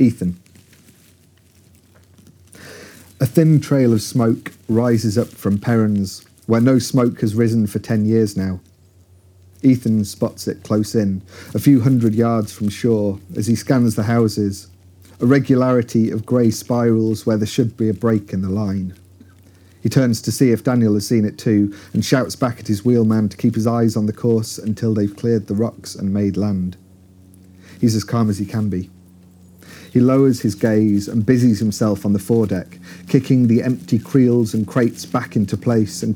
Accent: British